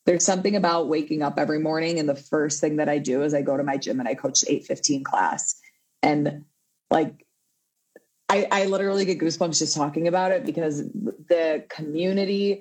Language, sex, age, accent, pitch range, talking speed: English, female, 30-49, American, 150-195 Hz, 190 wpm